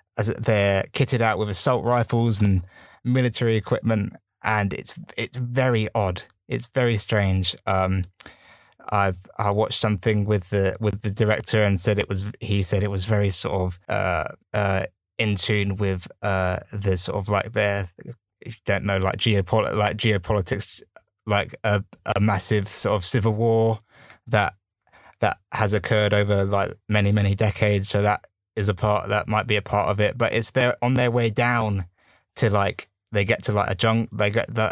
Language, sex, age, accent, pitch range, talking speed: English, male, 20-39, British, 100-115 Hz, 180 wpm